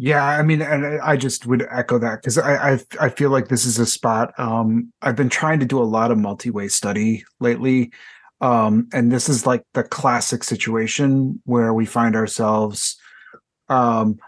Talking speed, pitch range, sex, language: 185 wpm, 120-140 Hz, male, English